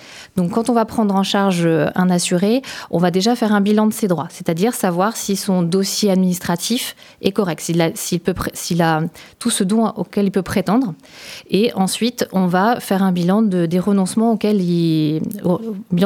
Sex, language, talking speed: female, French, 195 wpm